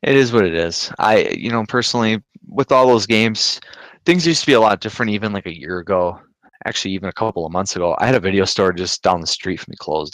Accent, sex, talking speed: American, male, 260 wpm